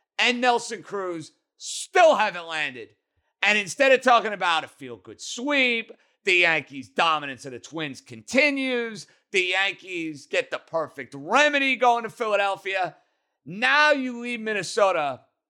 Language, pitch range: English, 155-245 Hz